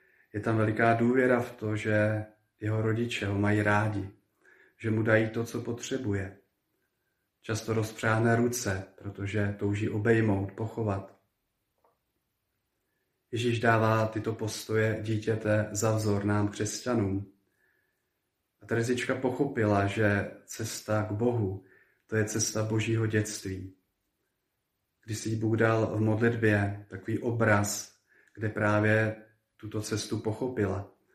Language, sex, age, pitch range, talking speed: Slovak, male, 40-59, 105-110 Hz, 110 wpm